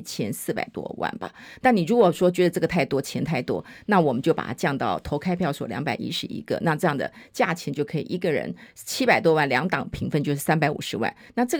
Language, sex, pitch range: Chinese, female, 160-230 Hz